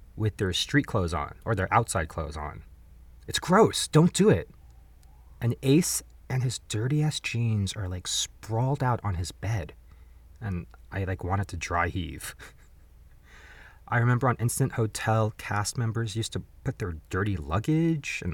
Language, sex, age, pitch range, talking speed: English, male, 30-49, 85-125 Hz, 165 wpm